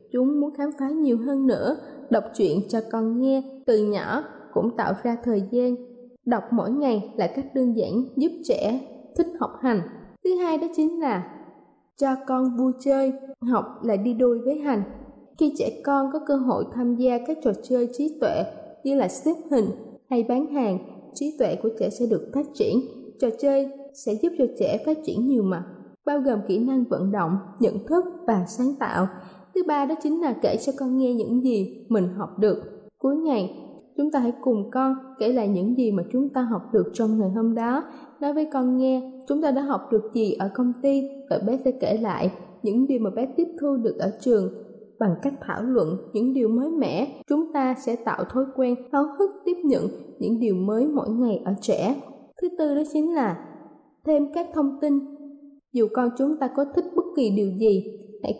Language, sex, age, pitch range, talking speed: Vietnamese, female, 20-39, 225-285 Hz, 205 wpm